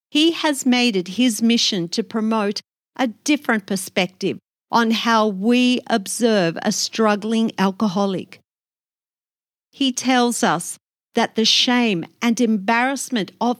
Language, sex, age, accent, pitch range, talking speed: English, female, 50-69, Australian, 195-240 Hz, 120 wpm